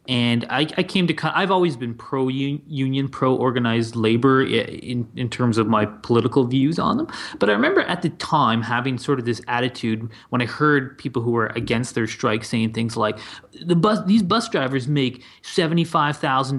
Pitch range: 120-170 Hz